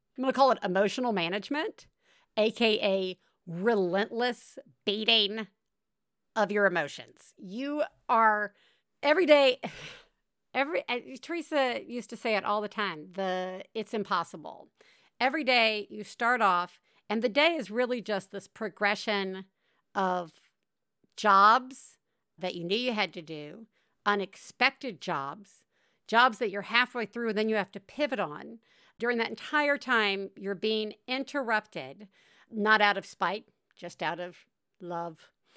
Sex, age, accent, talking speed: female, 50-69, American, 135 wpm